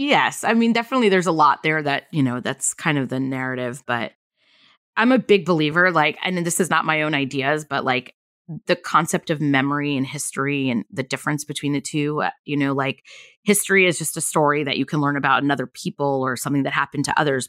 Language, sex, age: English, female, 20-39